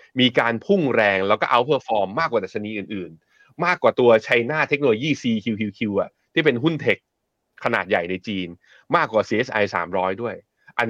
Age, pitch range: 20-39, 105-145 Hz